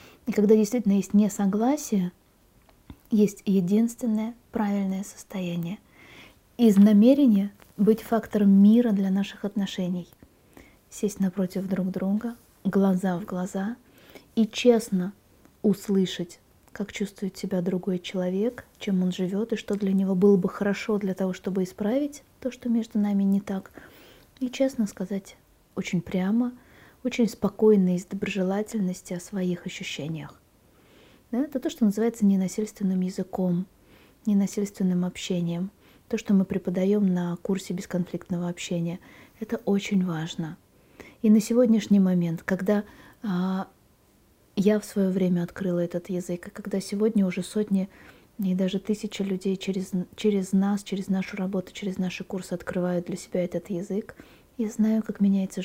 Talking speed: 135 wpm